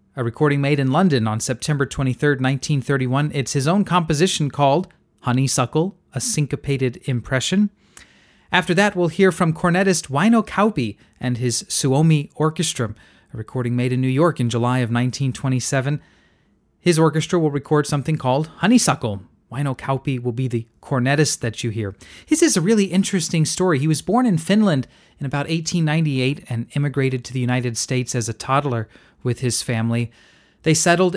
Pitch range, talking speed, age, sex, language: 125-165 Hz, 160 wpm, 30-49, male, English